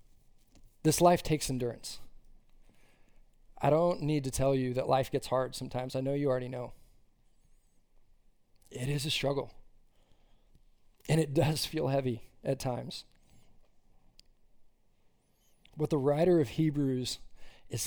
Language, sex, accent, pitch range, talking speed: English, male, American, 125-160 Hz, 125 wpm